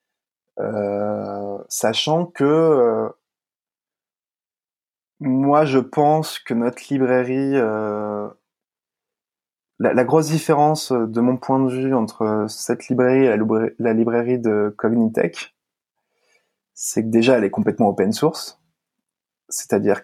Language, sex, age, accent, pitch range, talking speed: French, male, 20-39, French, 115-160 Hz, 115 wpm